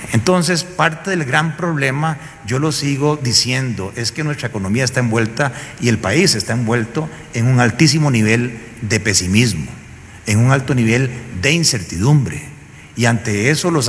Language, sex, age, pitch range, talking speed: Spanish, male, 40-59, 115-160 Hz, 155 wpm